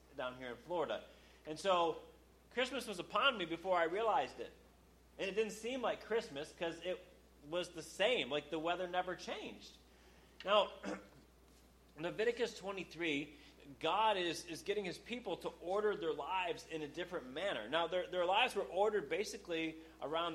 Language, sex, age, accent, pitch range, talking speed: English, male, 30-49, American, 145-190 Hz, 160 wpm